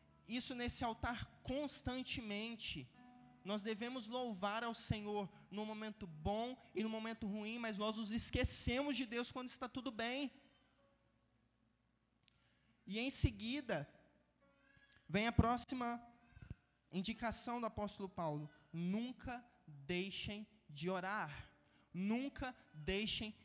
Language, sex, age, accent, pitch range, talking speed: Gujarati, male, 20-39, Brazilian, 170-230 Hz, 105 wpm